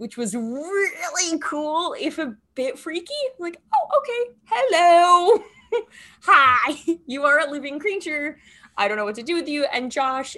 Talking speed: 160 wpm